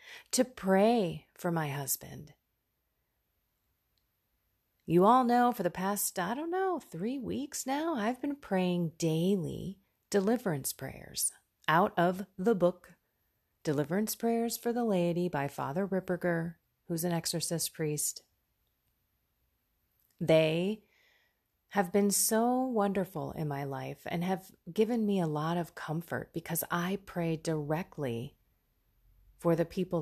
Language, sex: English, female